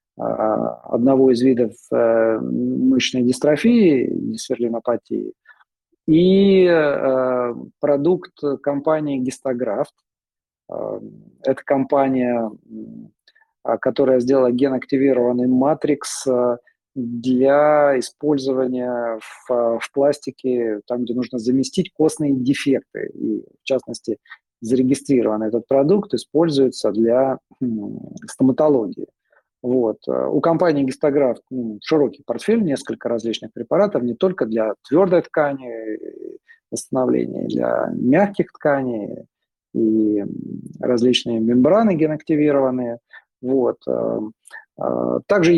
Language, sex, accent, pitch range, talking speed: Russian, male, native, 120-150 Hz, 75 wpm